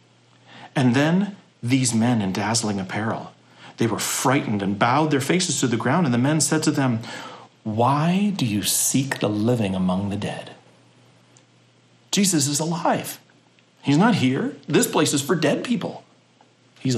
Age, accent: 40-59, American